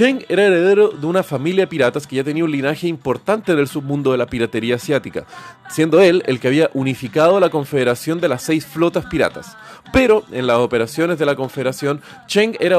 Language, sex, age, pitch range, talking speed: Spanish, male, 30-49, 135-175 Hz, 195 wpm